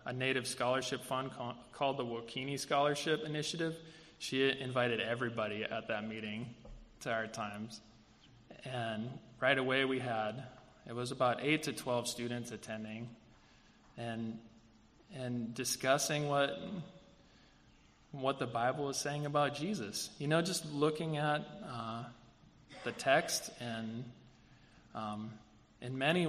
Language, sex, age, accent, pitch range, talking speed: English, male, 20-39, American, 115-135 Hz, 125 wpm